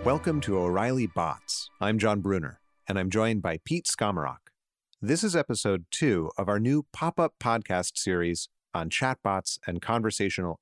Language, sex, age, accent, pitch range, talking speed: English, male, 40-59, American, 90-110 Hz, 155 wpm